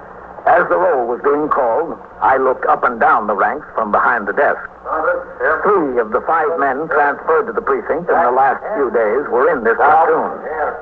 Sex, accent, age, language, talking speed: male, American, 60-79, English, 195 wpm